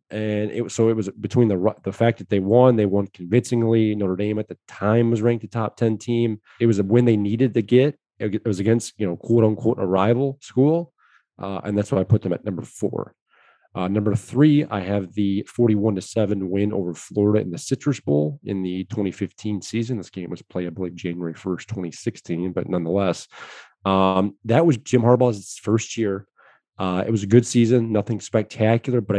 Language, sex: English, male